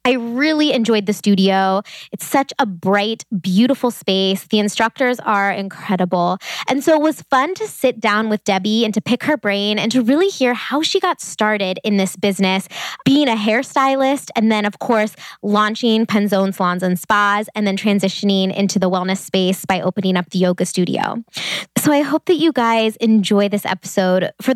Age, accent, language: 20-39, American, English